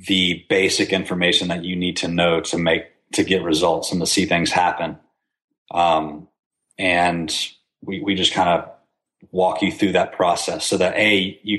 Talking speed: 175 wpm